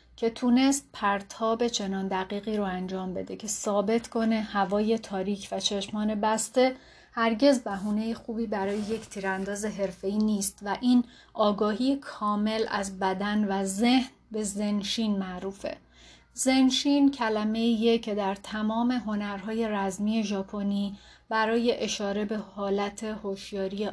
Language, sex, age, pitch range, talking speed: Persian, female, 30-49, 200-230 Hz, 120 wpm